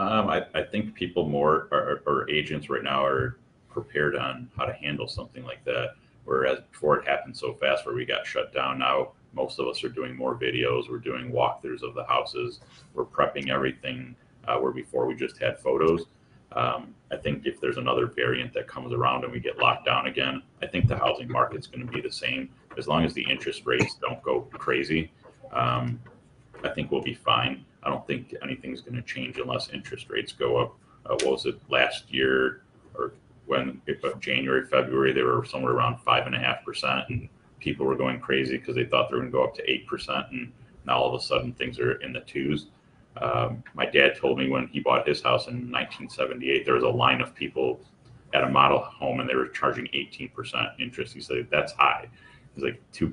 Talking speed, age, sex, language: 215 wpm, 30-49, male, English